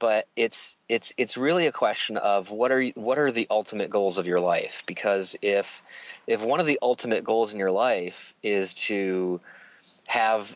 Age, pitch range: 30-49, 95-120 Hz